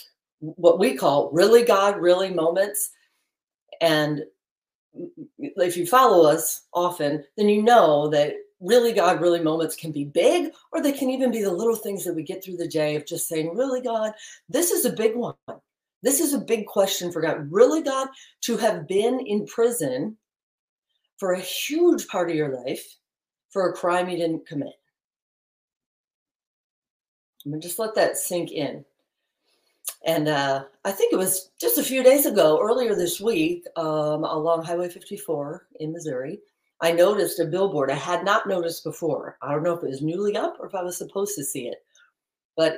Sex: female